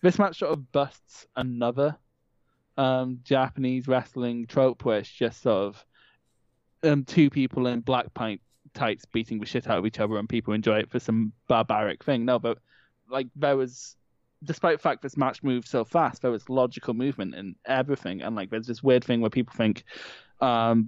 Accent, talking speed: British, 185 wpm